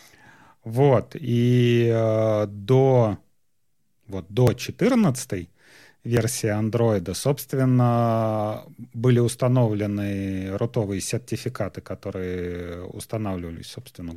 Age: 30-49